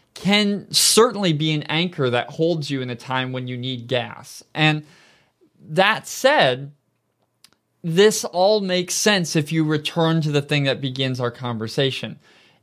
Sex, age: male, 20-39